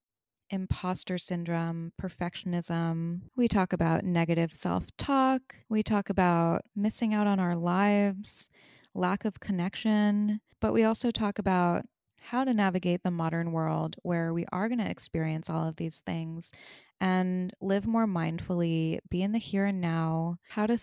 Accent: American